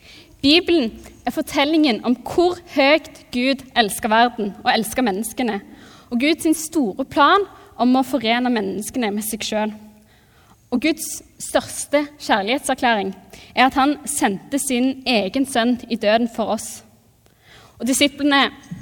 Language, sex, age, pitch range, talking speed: English, female, 20-39, 225-275 Hz, 130 wpm